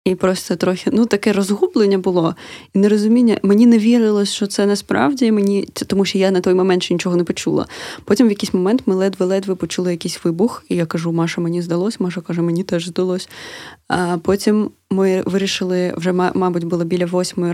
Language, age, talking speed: Ukrainian, 20-39, 190 wpm